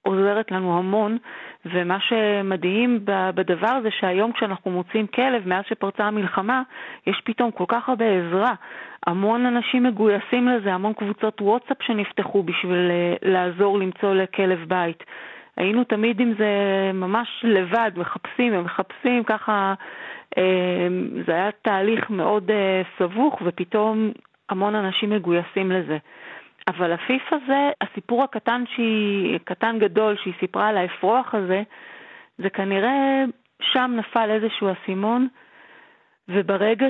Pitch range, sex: 185-225 Hz, female